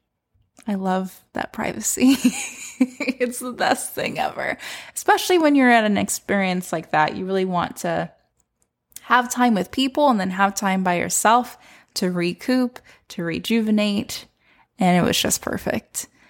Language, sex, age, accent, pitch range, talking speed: English, female, 20-39, American, 185-230 Hz, 145 wpm